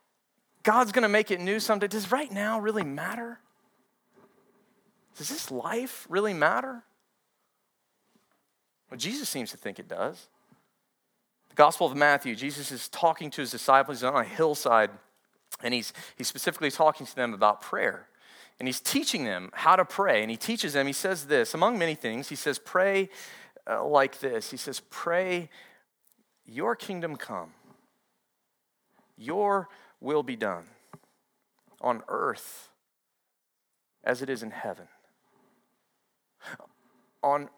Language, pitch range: English, 145-215 Hz